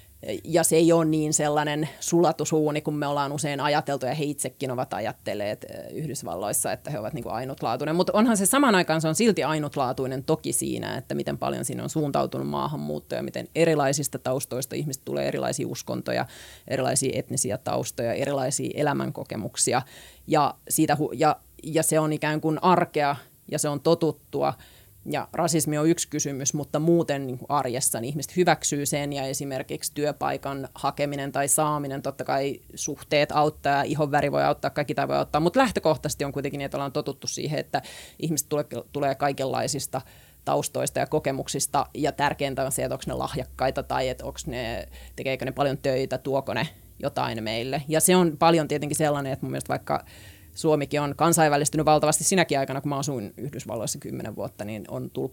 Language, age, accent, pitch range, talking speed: Finnish, 30-49, native, 135-155 Hz, 170 wpm